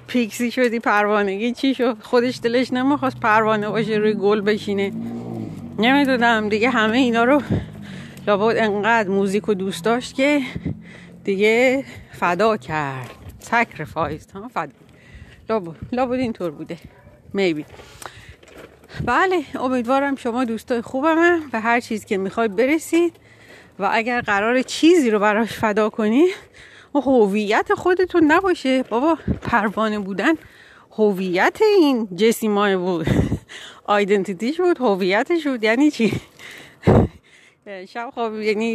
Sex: female